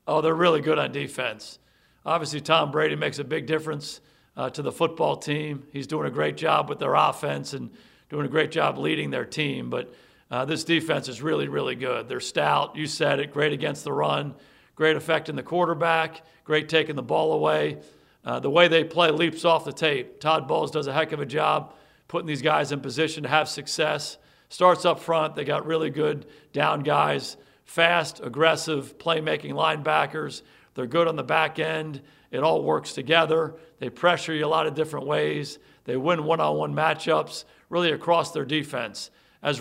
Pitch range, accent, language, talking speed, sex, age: 150-160 Hz, American, English, 190 wpm, male, 50-69